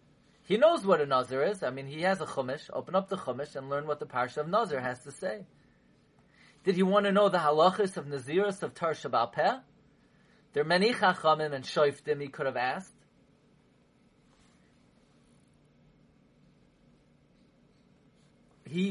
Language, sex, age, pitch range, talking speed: English, male, 30-49, 185-270 Hz, 150 wpm